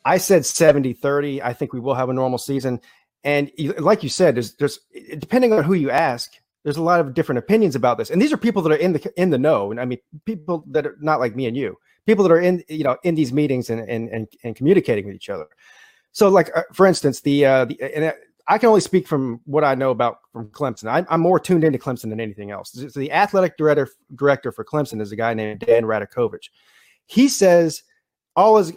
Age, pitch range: 30-49, 130-180 Hz